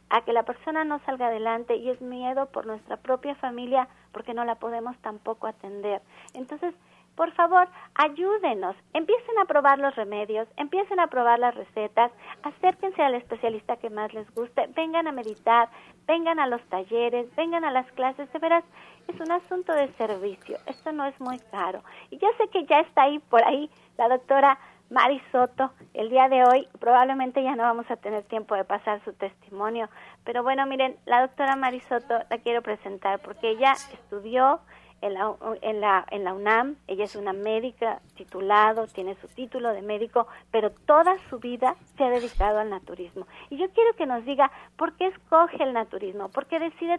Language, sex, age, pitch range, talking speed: Spanish, female, 40-59, 220-285 Hz, 180 wpm